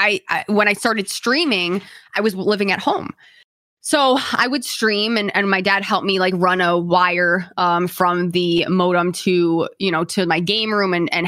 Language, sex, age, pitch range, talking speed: English, female, 20-39, 185-235 Hz, 190 wpm